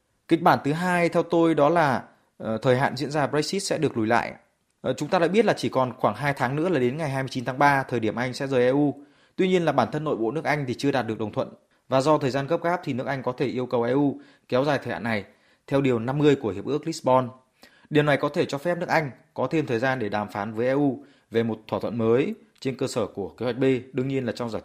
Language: Vietnamese